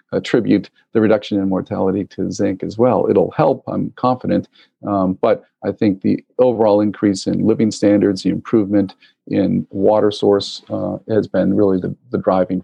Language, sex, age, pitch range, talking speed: English, male, 50-69, 100-115 Hz, 165 wpm